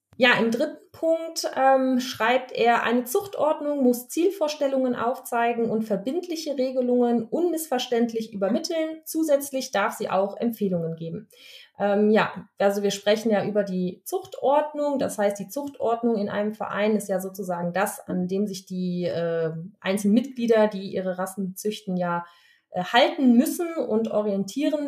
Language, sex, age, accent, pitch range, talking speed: German, female, 20-39, German, 195-260 Hz, 140 wpm